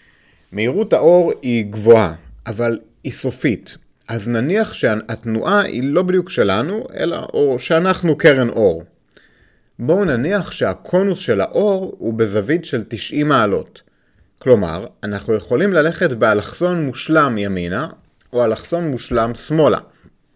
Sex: male